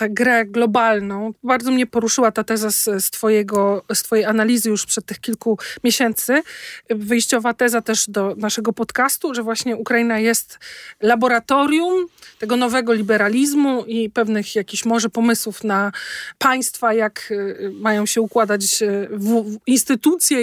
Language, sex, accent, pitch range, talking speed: Polish, male, native, 215-260 Hz, 125 wpm